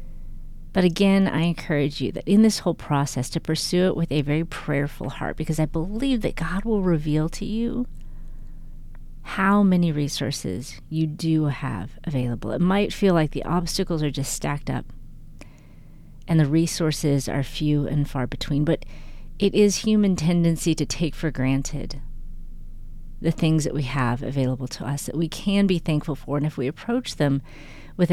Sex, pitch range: female, 140-175 Hz